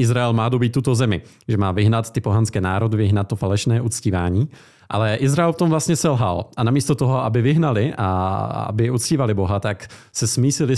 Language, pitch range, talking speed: Czech, 100-130 Hz, 185 wpm